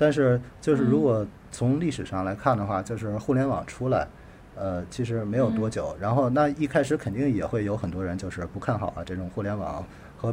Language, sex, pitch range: Chinese, male, 95-125 Hz